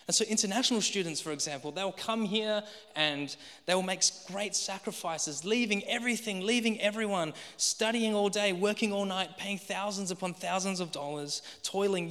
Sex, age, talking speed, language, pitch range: male, 20-39, 155 wpm, English, 135-195 Hz